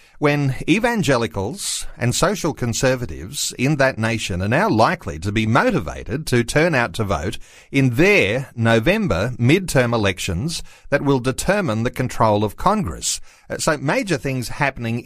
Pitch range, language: 115-155 Hz, English